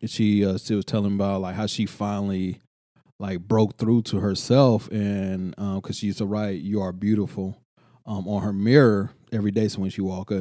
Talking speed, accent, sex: 215 wpm, American, male